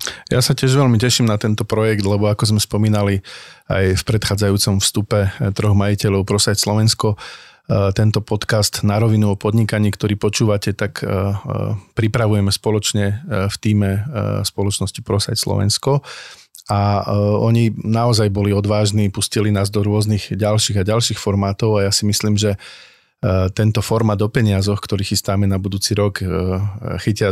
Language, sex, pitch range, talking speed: Slovak, male, 100-110 Hz, 140 wpm